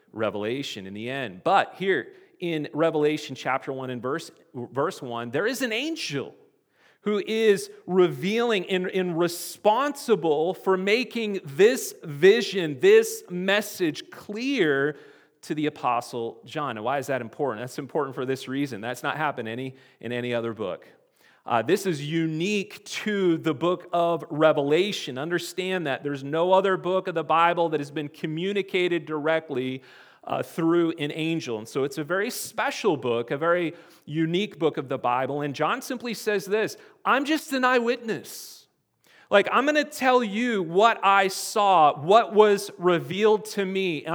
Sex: male